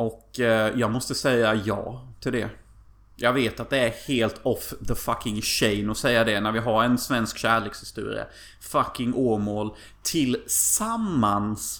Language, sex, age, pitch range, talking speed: Swedish, male, 30-49, 100-125 Hz, 145 wpm